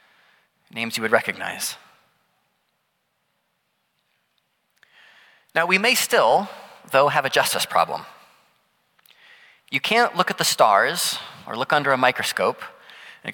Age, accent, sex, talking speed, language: 30-49, American, male, 110 wpm, English